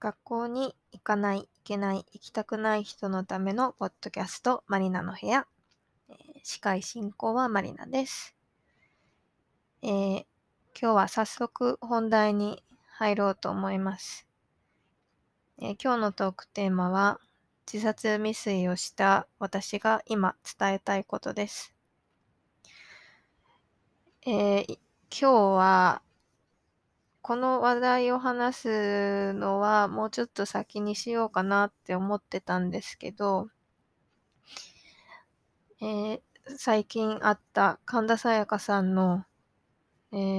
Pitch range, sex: 195-225 Hz, female